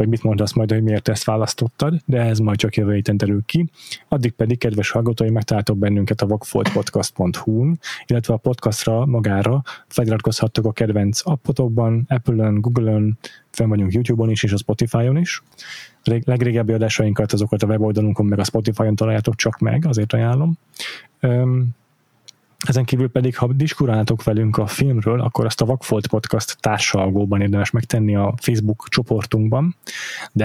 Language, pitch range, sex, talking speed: Hungarian, 110-125 Hz, male, 150 wpm